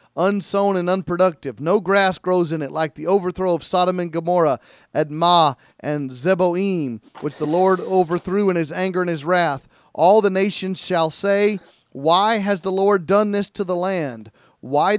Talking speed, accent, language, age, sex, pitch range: 170 wpm, American, English, 40-59, male, 160-190 Hz